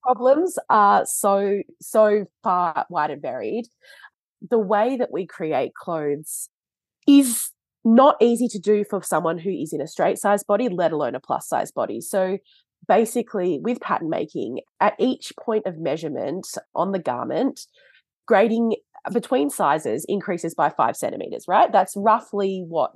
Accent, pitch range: Australian, 180-235 Hz